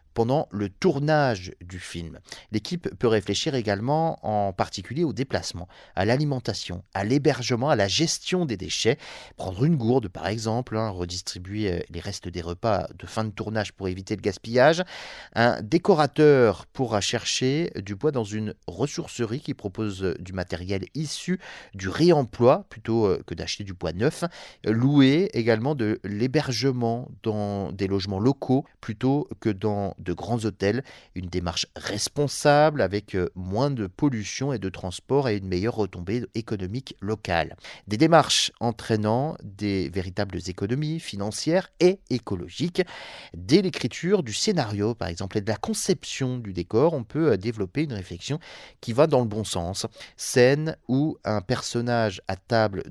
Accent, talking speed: French, 150 wpm